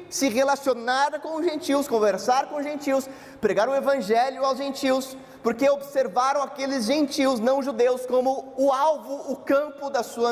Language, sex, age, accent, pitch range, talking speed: Portuguese, male, 20-39, Brazilian, 235-275 Hz, 155 wpm